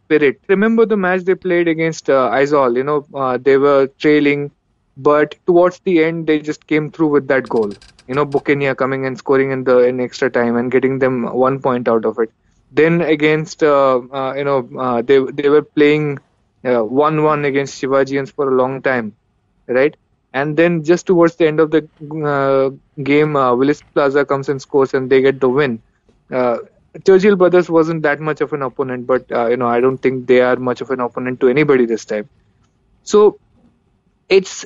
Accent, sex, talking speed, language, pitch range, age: Indian, male, 195 wpm, English, 130-155 Hz, 20-39